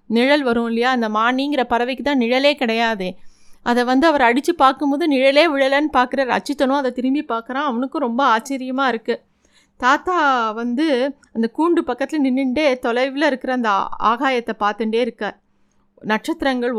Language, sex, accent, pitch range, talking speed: Tamil, female, native, 220-265 Hz, 135 wpm